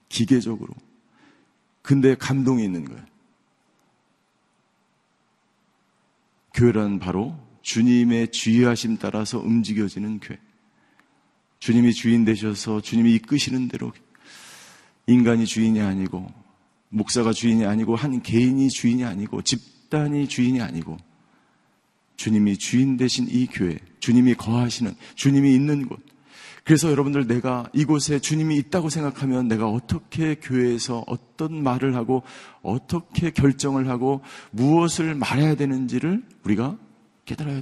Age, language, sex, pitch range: 40-59, Korean, male, 115-135 Hz